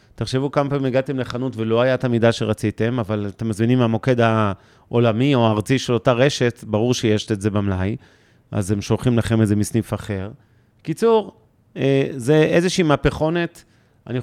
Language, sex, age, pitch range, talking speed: Hebrew, male, 40-59, 110-130 Hz, 155 wpm